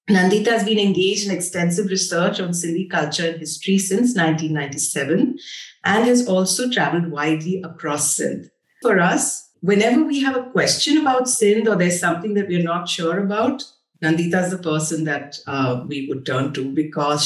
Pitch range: 160-200 Hz